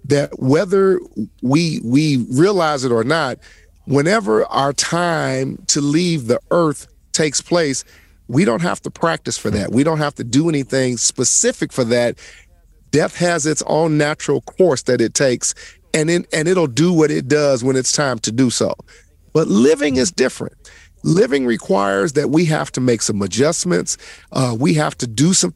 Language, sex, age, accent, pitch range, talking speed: English, male, 40-59, American, 125-165 Hz, 180 wpm